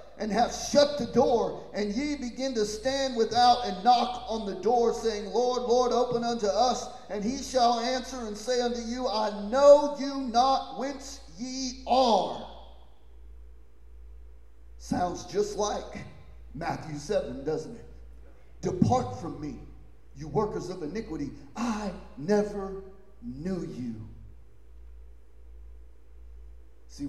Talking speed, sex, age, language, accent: 125 wpm, male, 40-59, English, American